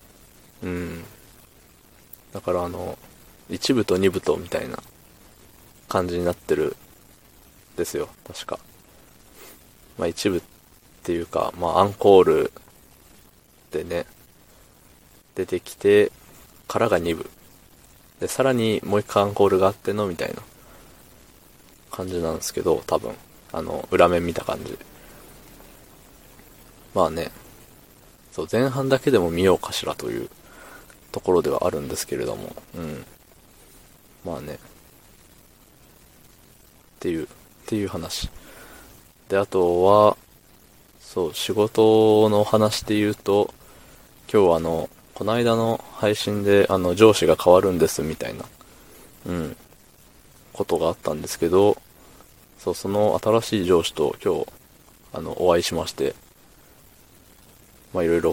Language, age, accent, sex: Japanese, 20-39, native, male